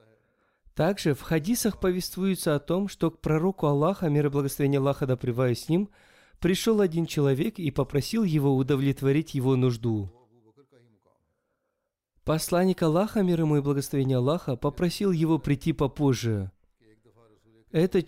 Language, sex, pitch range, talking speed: Russian, male, 130-170 Hz, 125 wpm